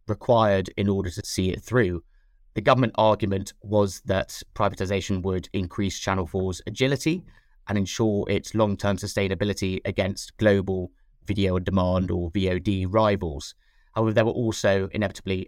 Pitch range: 95-110 Hz